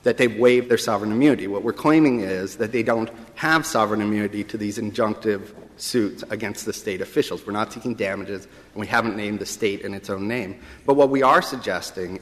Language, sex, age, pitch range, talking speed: English, male, 30-49, 105-130 Hz, 210 wpm